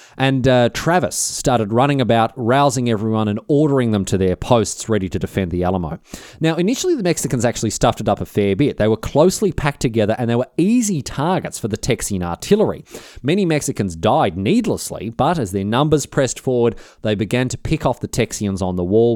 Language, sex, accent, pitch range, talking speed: English, male, Australian, 100-130 Hz, 200 wpm